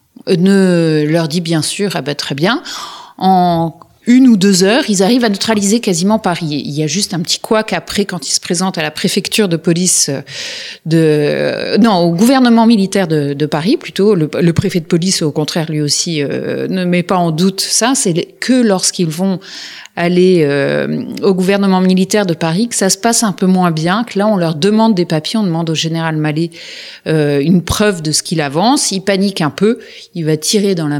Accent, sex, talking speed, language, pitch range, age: French, female, 200 wpm, French, 160-210 Hz, 30-49